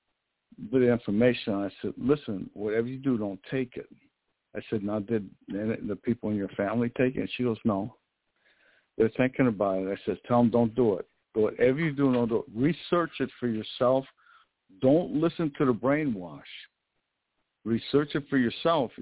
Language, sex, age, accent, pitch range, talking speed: English, male, 60-79, American, 105-130 Hz, 180 wpm